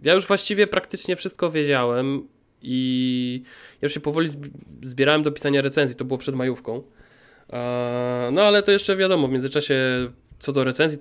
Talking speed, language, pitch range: 165 wpm, Polish, 140-195 Hz